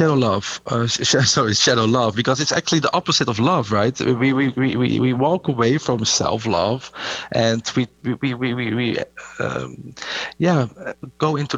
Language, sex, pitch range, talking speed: English, male, 100-135 Hz, 165 wpm